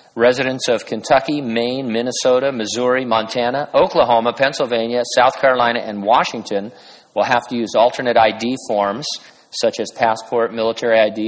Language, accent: English, American